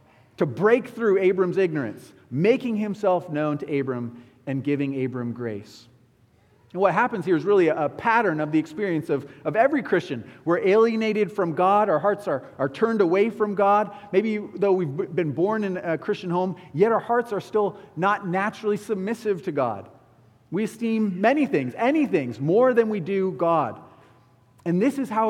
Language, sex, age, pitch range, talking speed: English, male, 40-59, 135-200 Hz, 180 wpm